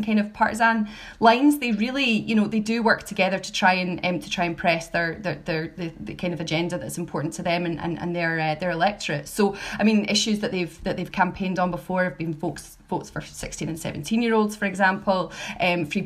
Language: English